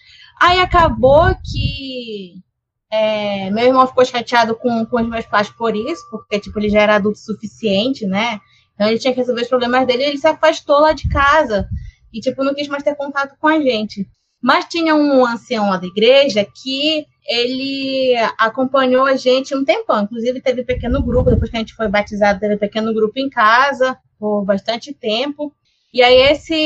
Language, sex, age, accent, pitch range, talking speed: Portuguese, female, 20-39, Brazilian, 220-285 Hz, 190 wpm